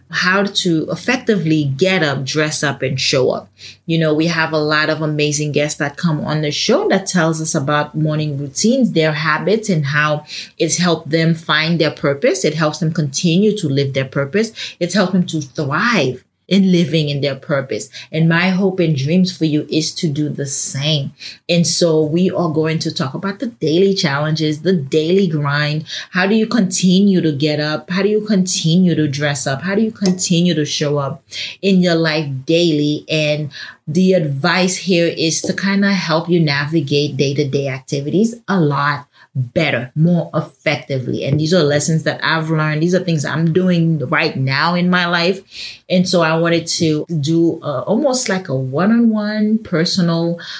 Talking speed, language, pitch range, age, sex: 185 wpm, English, 150-180 Hz, 30-49, female